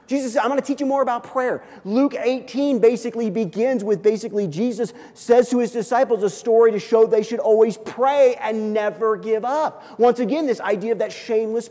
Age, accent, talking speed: 40-59, American, 205 wpm